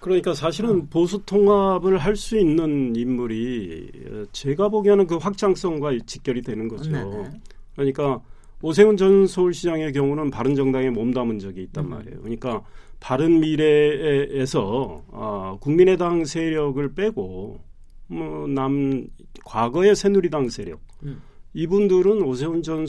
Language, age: Korean, 40-59